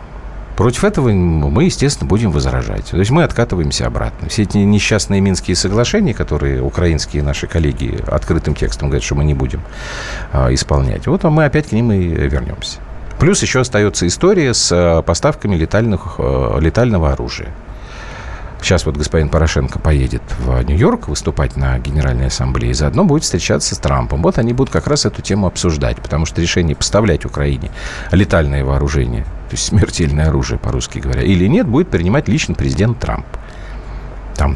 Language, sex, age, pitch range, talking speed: Russian, male, 40-59, 75-115 Hz, 155 wpm